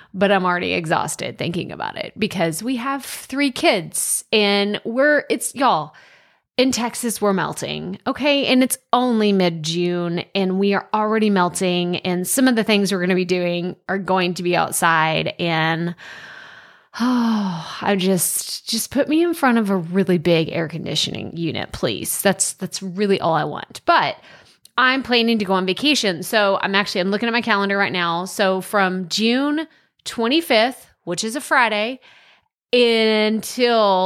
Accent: American